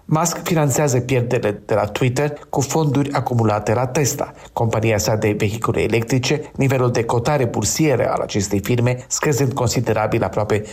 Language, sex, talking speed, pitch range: Romanian, male, 145 wpm, 110-135 Hz